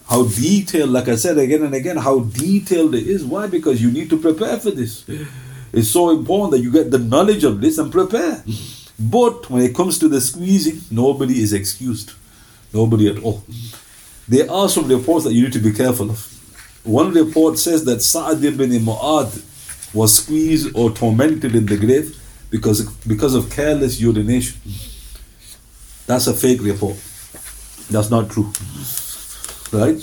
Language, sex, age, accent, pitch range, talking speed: English, male, 50-69, Indian, 110-135 Hz, 165 wpm